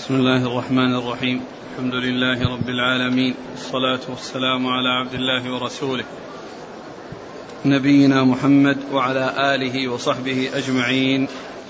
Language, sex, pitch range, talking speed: Arabic, male, 135-150 Hz, 105 wpm